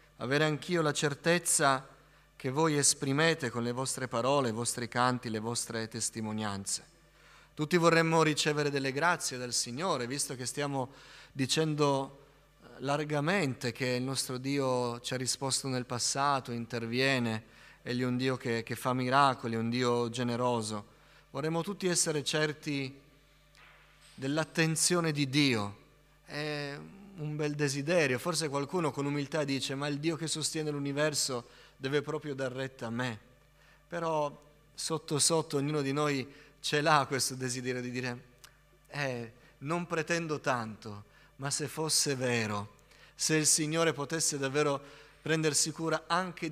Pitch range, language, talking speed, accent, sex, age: 125-155 Hz, Italian, 140 wpm, native, male, 30-49